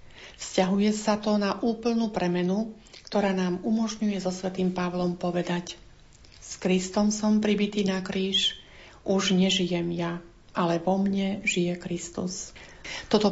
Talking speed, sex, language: 125 wpm, female, Slovak